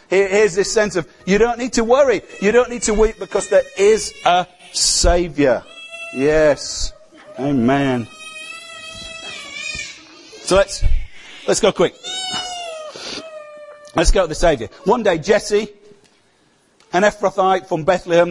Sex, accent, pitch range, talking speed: male, British, 140-195 Hz, 125 wpm